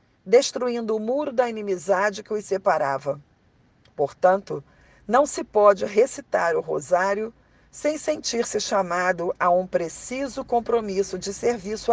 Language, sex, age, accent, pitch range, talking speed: Portuguese, female, 40-59, Brazilian, 170-235 Hz, 120 wpm